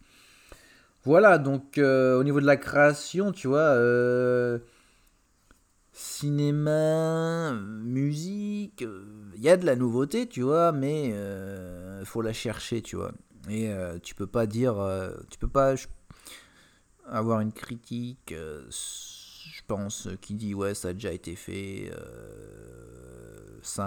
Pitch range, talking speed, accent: 95-125 Hz, 140 wpm, French